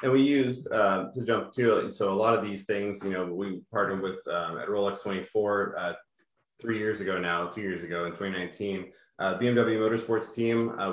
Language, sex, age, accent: English, male, 20-39, American